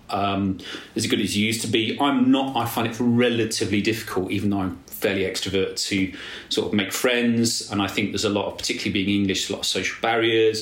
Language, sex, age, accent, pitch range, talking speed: English, male, 30-49, British, 100-120 Hz, 225 wpm